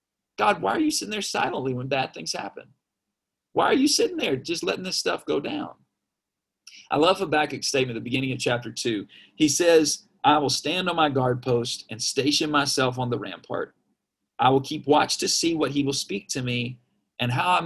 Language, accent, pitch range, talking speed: English, American, 130-180 Hz, 210 wpm